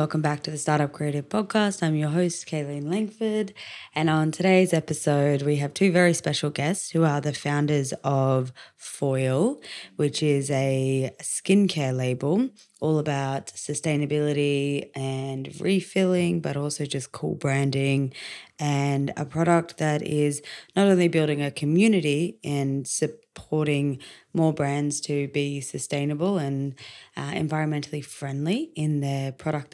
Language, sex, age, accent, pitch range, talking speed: English, female, 20-39, Australian, 140-170 Hz, 135 wpm